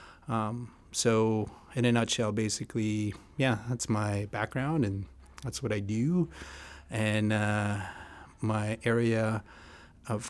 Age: 30-49